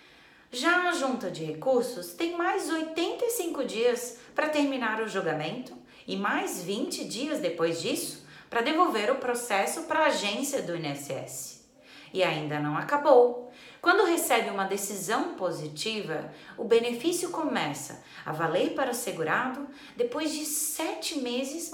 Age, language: 30-49, Portuguese